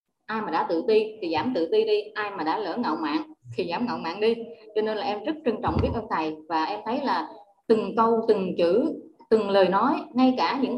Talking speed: 250 wpm